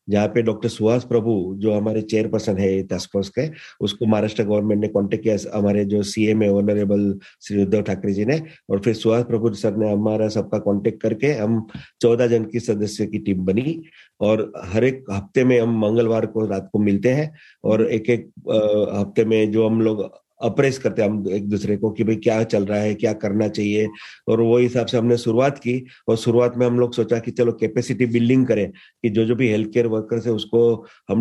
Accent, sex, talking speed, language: native, male, 205 wpm, Hindi